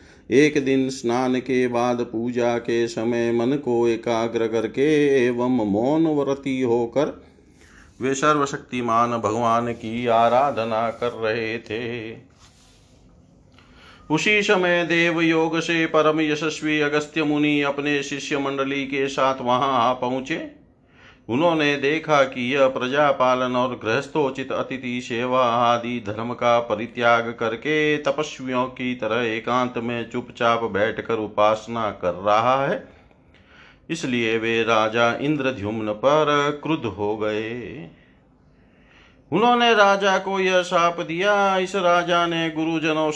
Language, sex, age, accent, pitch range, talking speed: Hindi, male, 40-59, native, 120-150 Hz, 115 wpm